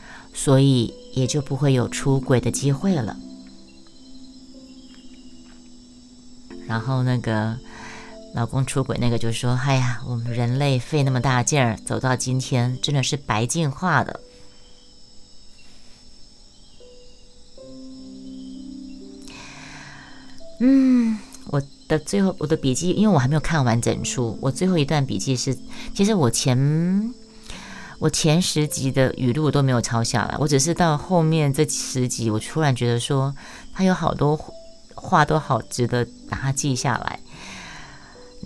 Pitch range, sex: 125-190 Hz, female